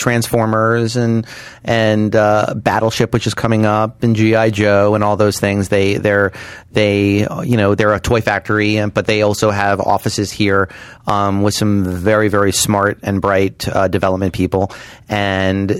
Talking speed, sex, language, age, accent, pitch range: 165 wpm, male, English, 30-49, American, 95-110 Hz